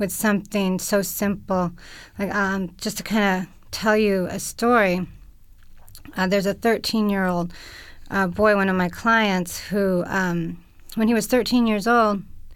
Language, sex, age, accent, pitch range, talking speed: English, female, 30-49, American, 180-215 Hz, 155 wpm